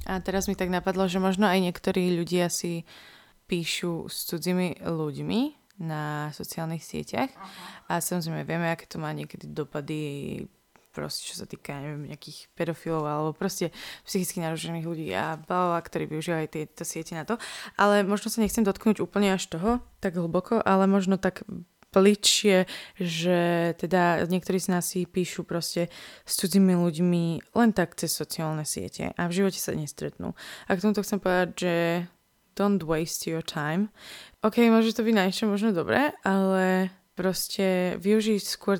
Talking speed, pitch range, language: 160 wpm, 165-200 Hz, Slovak